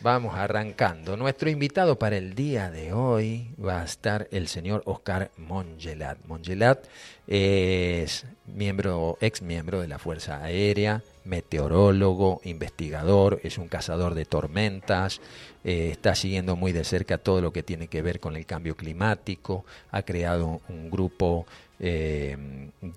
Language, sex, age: Spanish, male, 40-59